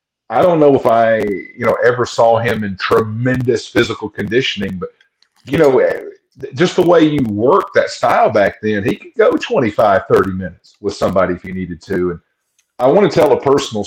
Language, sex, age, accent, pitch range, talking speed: English, male, 50-69, American, 105-165 Hz, 195 wpm